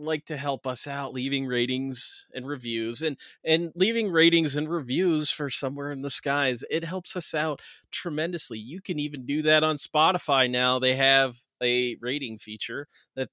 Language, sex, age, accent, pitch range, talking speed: English, male, 30-49, American, 120-145 Hz, 175 wpm